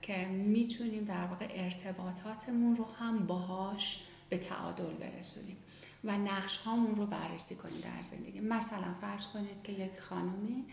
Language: Persian